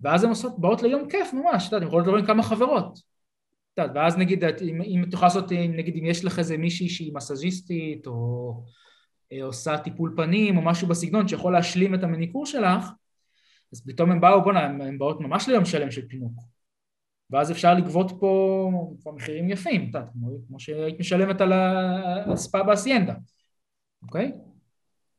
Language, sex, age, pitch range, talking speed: Hebrew, male, 20-39, 150-205 Hz, 170 wpm